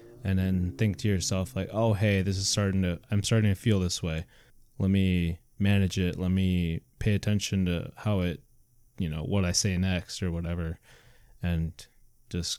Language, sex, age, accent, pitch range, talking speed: English, male, 20-39, American, 95-115 Hz, 185 wpm